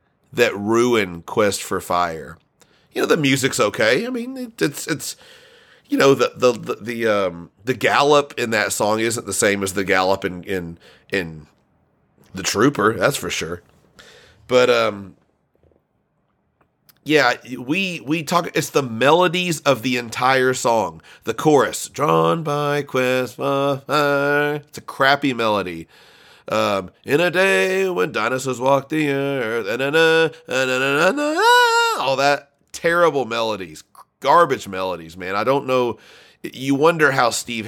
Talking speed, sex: 140 wpm, male